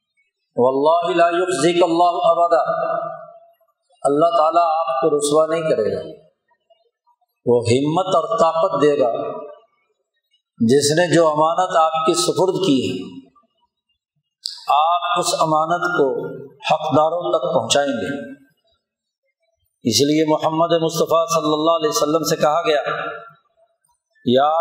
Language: Urdu